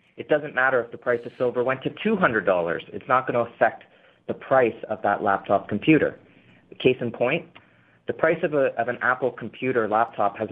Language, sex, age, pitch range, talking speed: English, male, 30-49, 100-130 Hz, 195 wpm